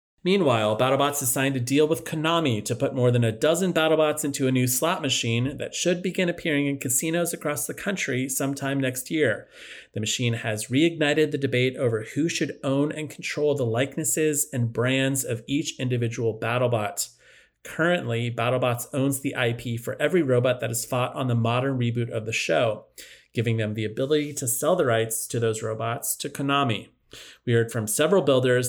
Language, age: English, 30-49